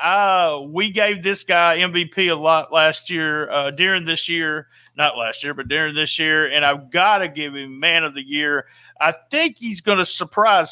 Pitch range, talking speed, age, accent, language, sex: 150-210 Hz, 205 wpm, 40-59, American, English, male